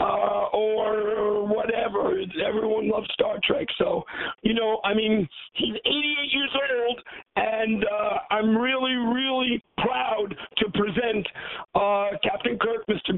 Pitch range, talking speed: 220-270 Hz, 130 wpm